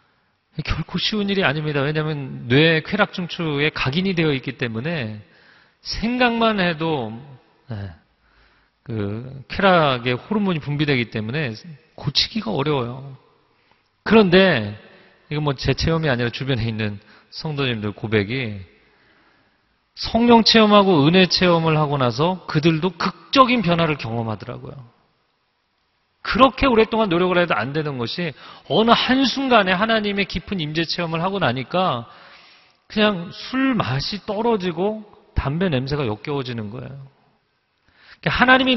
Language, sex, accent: Korean, male, native